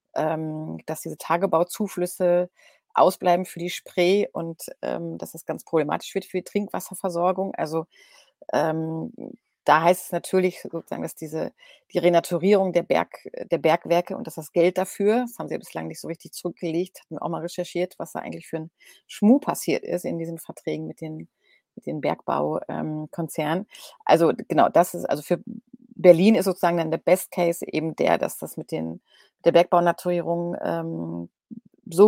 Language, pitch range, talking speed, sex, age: German, 160-185 Hz, 170 wpm, female, 30-49